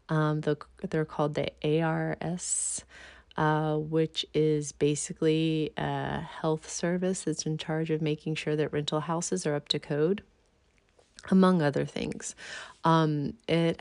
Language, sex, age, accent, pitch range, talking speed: English, female, 30-49, American, 150-180 Hz, 130 wpm